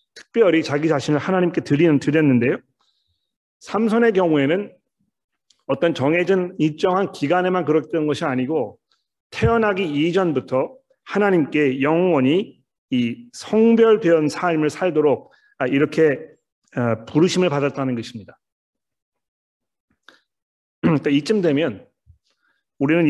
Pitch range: 140-175 Hz